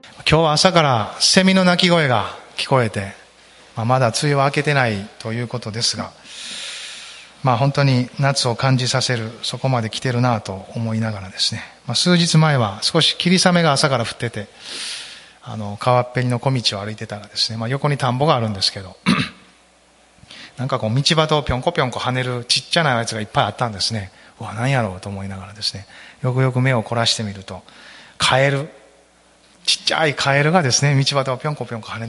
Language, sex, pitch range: Japanese, male, 110-135 Hz